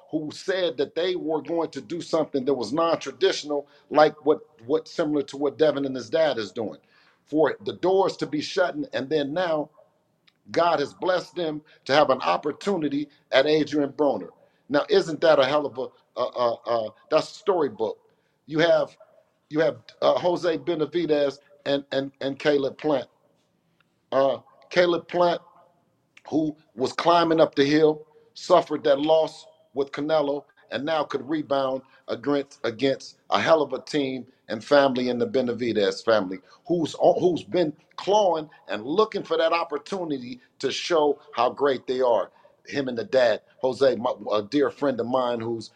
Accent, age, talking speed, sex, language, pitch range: American, 50-69, 165 wpm, male, English, 140-175 Hz